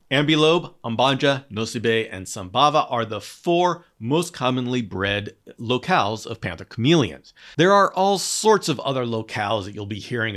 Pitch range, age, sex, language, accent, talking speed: 115-150 Hz, 40-59, male, English, American, 150 wpm